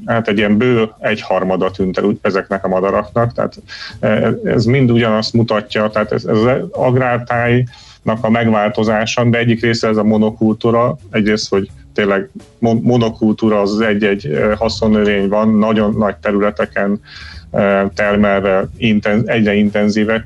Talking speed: 120 wpm